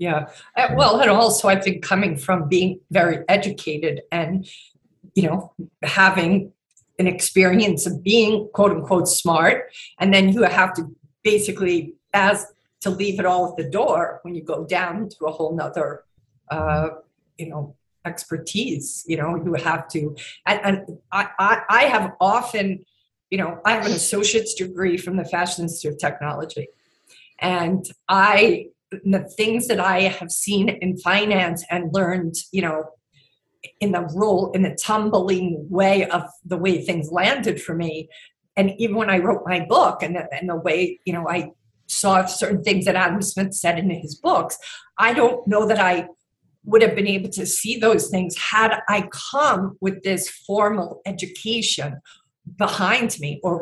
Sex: female